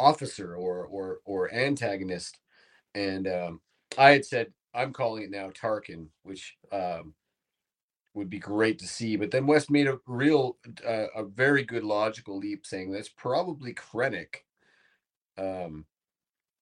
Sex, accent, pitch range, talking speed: male, American, 90-110 Hz, 140 wpm